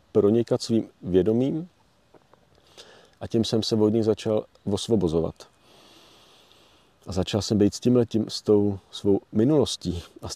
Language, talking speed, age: Czech, 135 wpm, 40-59